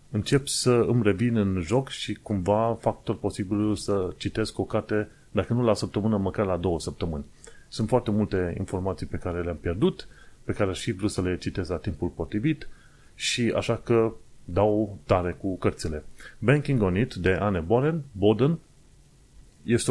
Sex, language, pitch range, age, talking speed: male, Romanian, 95-115 Hz, 30-49, 165 wpm